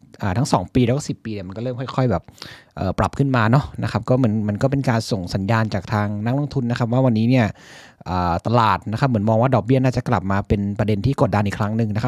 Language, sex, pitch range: Thai, male, 105-135 Hz